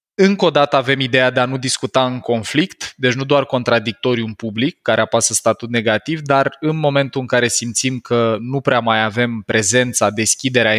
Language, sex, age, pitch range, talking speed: Romanian, male, 20-39, 115-140 Hz, 190 wpm